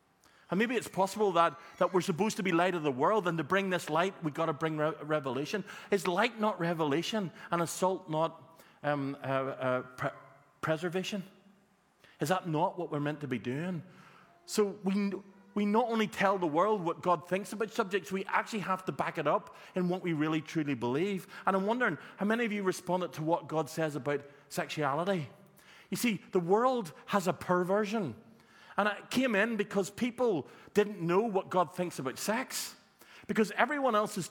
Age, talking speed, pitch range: 40-59, 190 wpm, 170-220 Hz